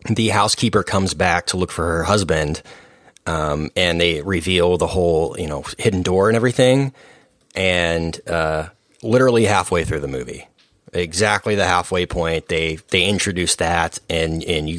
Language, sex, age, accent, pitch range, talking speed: English, male, 30-49, American, 90-110 Hz, 160 wpm